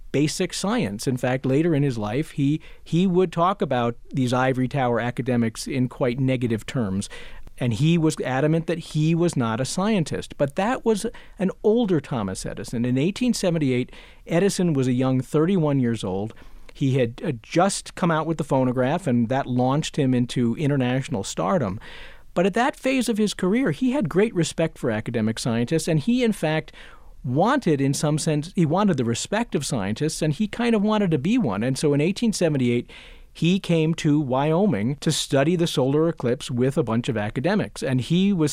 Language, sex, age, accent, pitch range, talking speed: English, male, 50-69, American, 125-170 Hz, 185 wpm